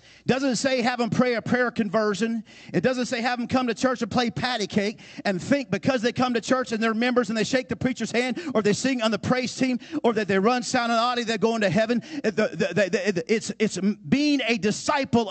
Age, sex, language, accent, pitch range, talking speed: 50-69, male, English, American, 180-250 Hz, 235 wpm